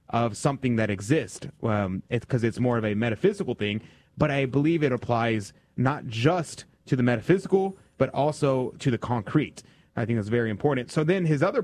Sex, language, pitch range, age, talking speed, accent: male, English, 120-155 Hz, 30-49, 185 wpm, American